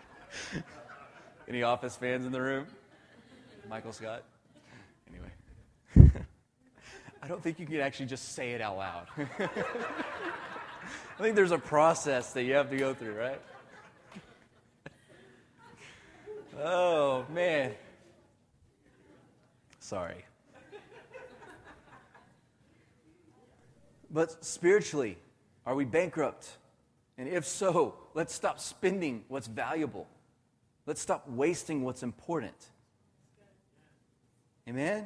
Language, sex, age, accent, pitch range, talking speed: English, male, 30-49, American, 120-155 Hz, 90 wpm